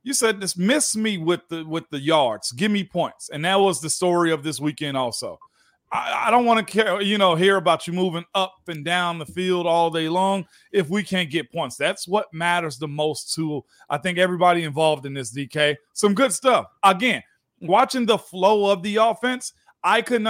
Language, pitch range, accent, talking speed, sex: English, 170-210 Hz, American, 210 wpm, male